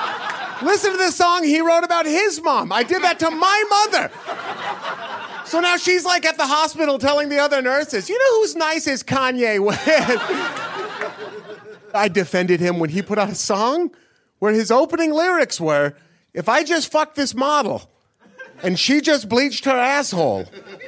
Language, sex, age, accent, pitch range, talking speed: English, male, 30-49, American, 210-315 Hz, 170 wpm